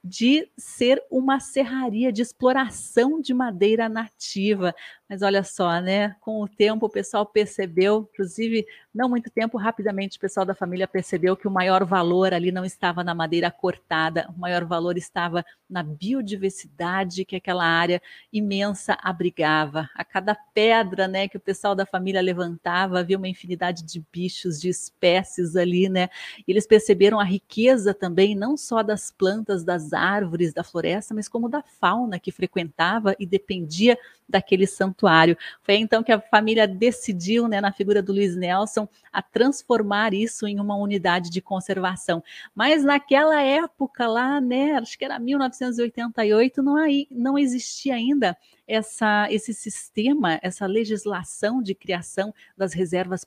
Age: 40-59